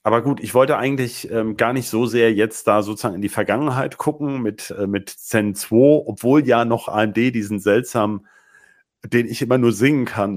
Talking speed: 195 wpm